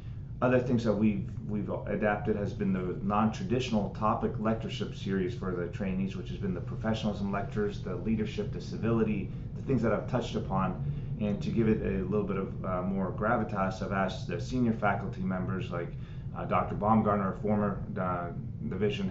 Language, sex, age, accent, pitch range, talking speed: English, male, 30-49, American, 100-125 Hz, 180 wpm